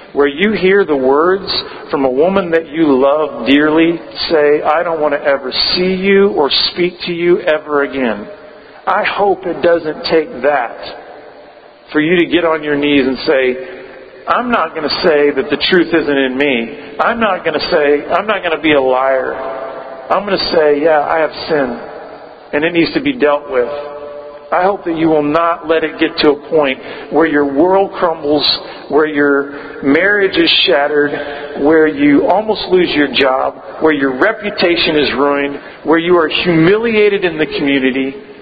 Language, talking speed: English, 185 wpm